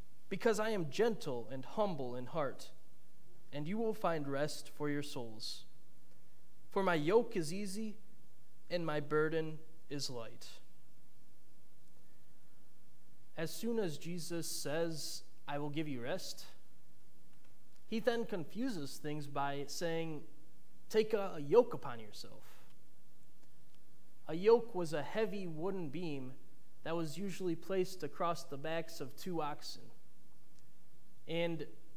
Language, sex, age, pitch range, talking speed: English, male, 20-39, 145-190 Hz, 120 wpm